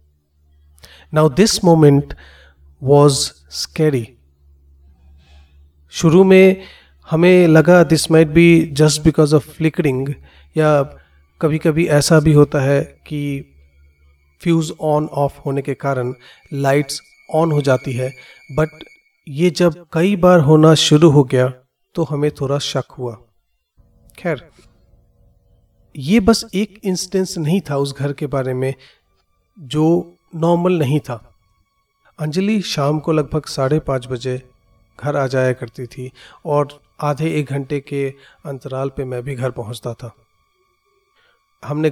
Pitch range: 125-160 Hz